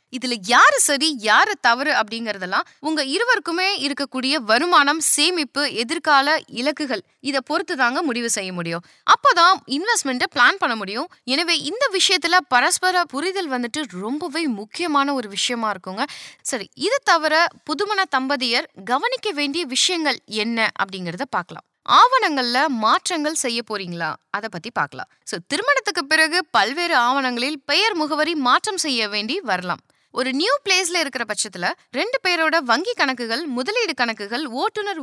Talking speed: 130 wpm